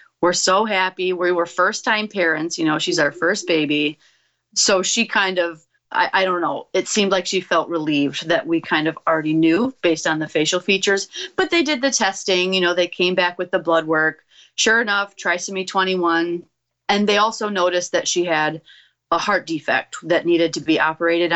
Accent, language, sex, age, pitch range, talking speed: American, English, female, 30-49, 165-205 Hz, 200 wpm